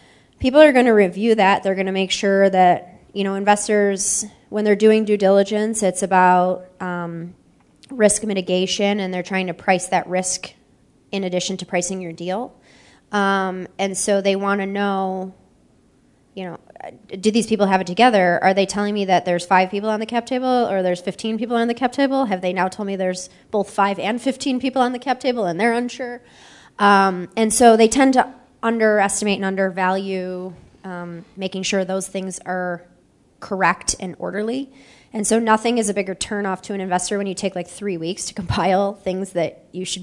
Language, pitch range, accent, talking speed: English, 185-220 Hz, American, 195 wpm